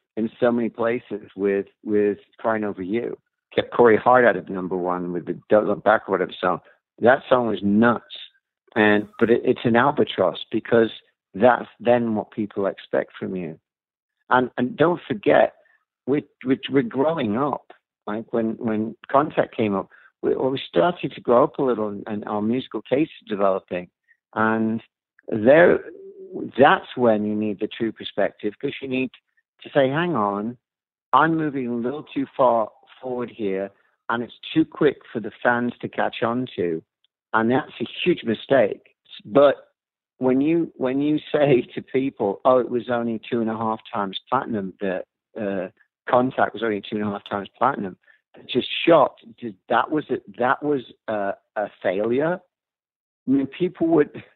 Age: 60-79